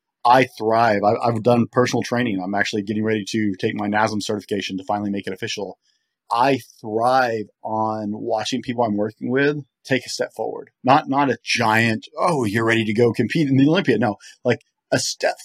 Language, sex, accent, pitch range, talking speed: English, male, American, 105-125 Hz, 195 wpm